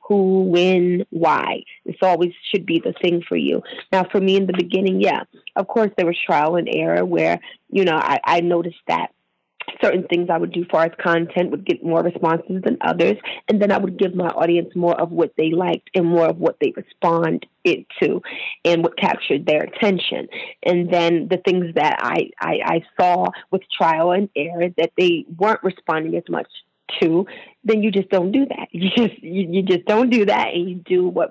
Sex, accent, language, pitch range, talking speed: female, American, English, 170-190 Hz, 205 wpm